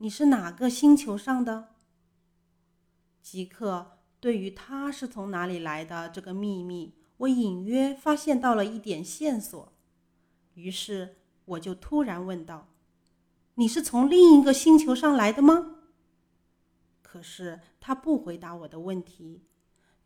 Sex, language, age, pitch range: female, Chinese, 30-49, 170-235 Hz